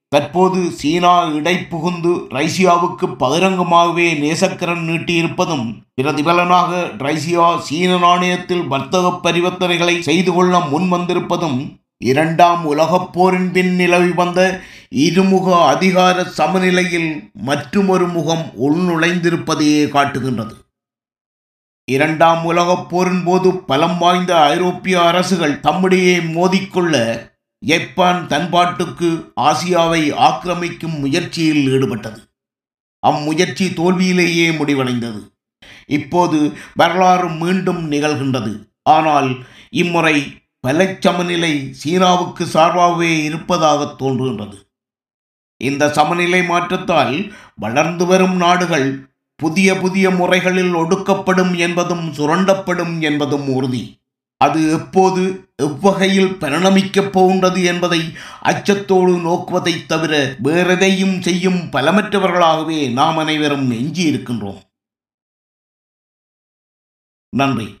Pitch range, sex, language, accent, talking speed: 150-180 Hz, male, Tamil, native, 80 wpm